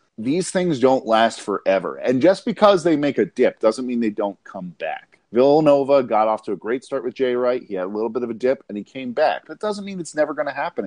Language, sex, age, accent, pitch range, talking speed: English, male, 40-59, American, 115-190 Hz, 265 wpm